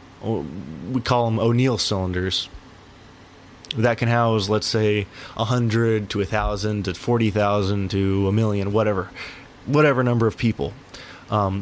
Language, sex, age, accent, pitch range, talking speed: English, male, 20-39, American, 100-125 Hz, 140 wpm